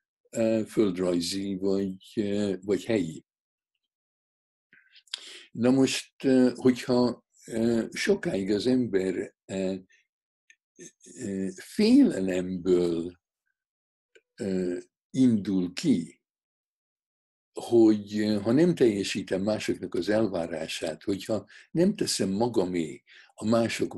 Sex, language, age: male, Hungarian, 60-79